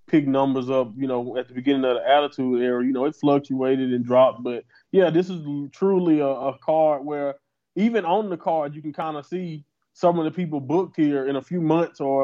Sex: male